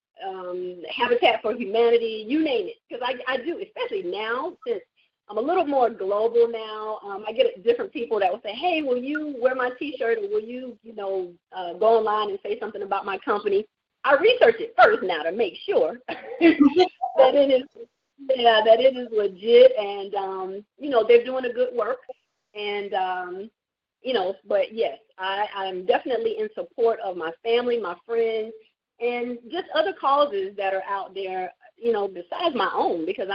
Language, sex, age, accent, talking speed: English, female, 40-59, American, 185 wpm